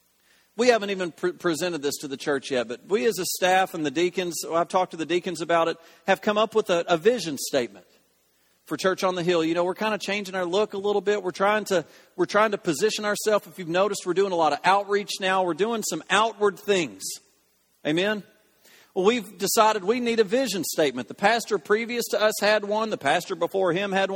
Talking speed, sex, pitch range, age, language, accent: 230 wpm, male, 170-205 Hz, 40-59, English, American